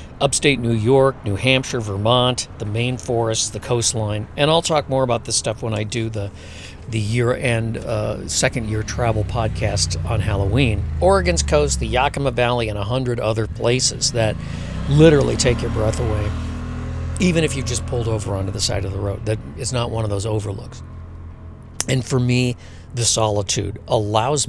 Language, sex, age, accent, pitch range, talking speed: English, male, 60-79, American, 105-130 Hz, 170 wpm